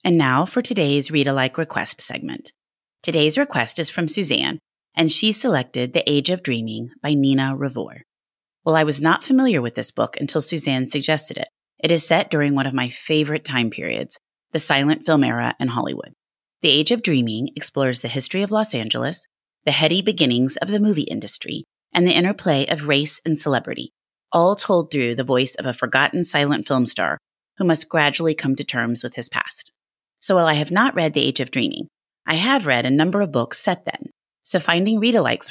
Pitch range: 130-165 Hz